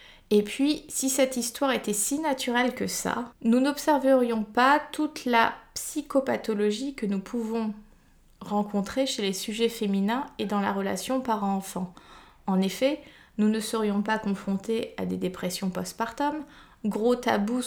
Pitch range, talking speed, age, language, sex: 205-255 Hz, 145 wpm, 20-39, French, female